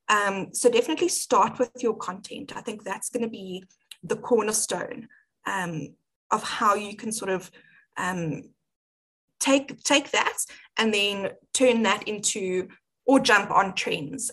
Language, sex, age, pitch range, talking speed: English, female, 20-39, 200-270 Hz, 145 wpm